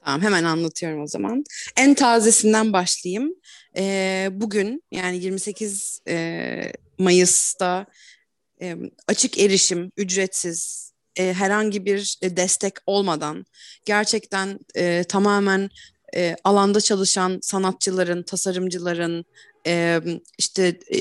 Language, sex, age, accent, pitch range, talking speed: Turkish, female, 30-49, native, 180-215 Hz, 75 wpm